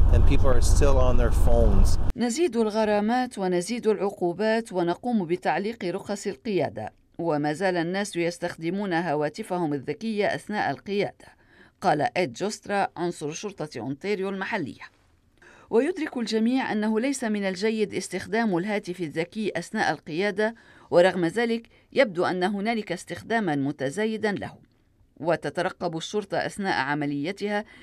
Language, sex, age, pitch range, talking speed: Arabic, female, 50-69, 170-220 Hz, 115 wpm